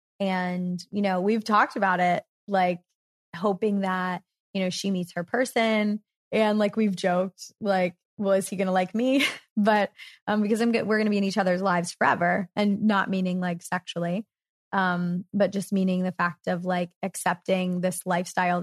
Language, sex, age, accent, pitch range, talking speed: English, female, 20-39, American, 180-205 Hz, 185 wpm